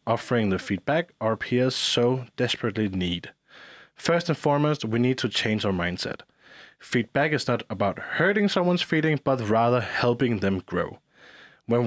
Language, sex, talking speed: Danish, male, 150 wpm